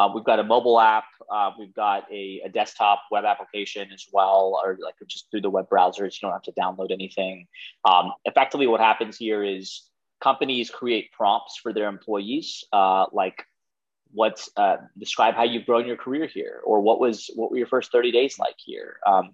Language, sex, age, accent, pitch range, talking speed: English, male, 20-39, American, 100-125 Hz, 200 wpm